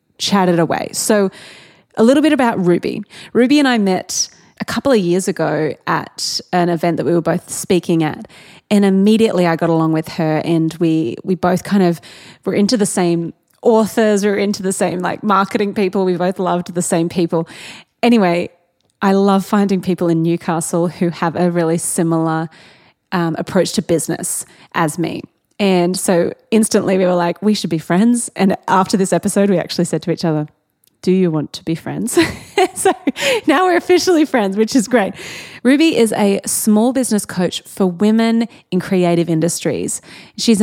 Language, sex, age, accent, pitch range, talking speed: English, female, 20-39, Australian, 170-215 Hz, 180 wpm